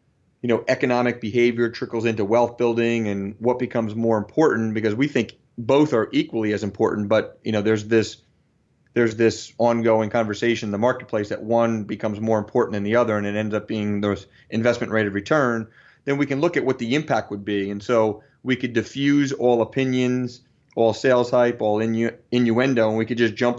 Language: English